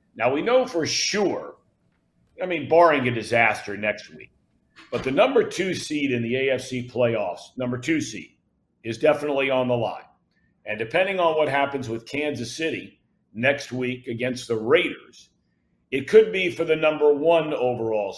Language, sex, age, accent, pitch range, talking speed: English, male, 50-69, American, 120-150 Hz, 165 wpm